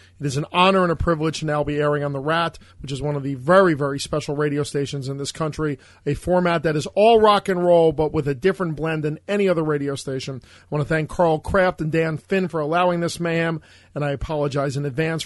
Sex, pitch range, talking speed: male, 150-175 Hz, 250 wpm